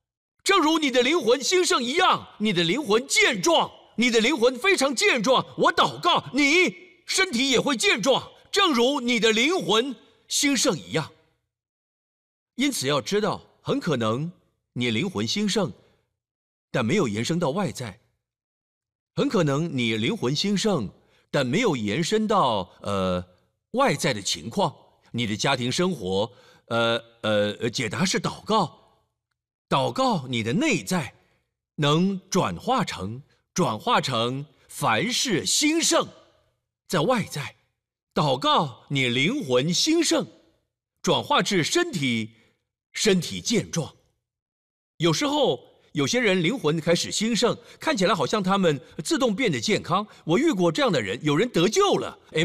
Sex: male